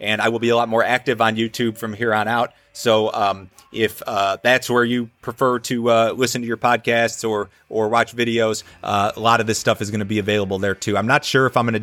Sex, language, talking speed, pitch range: male, English, 265 wpm, 100-120 Hz